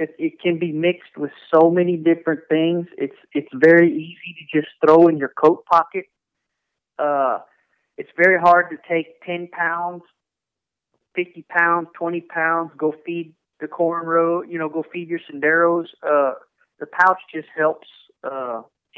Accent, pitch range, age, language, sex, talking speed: American, 135-170 Hz, 40-59, English, male, 150 wpm